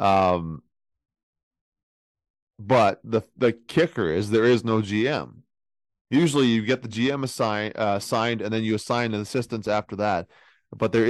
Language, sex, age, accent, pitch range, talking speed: English, male, 30-49, American, 95-110 Hz, 150 wpm